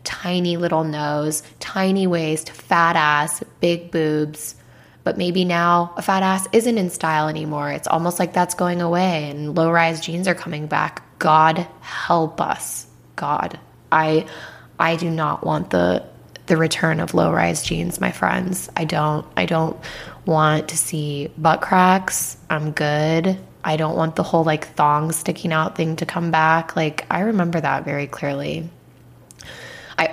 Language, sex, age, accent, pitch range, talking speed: English, female, 20-39, American, 150-170 Hz, 155 wpm